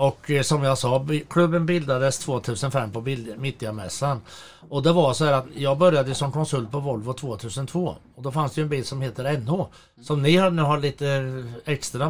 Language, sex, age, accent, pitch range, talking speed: Swedish, male, 60-79, native, 125-160 Hz, 205 wpm